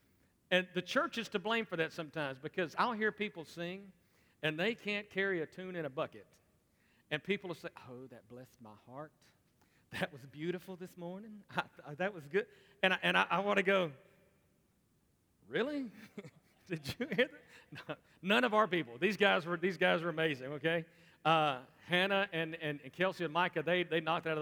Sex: male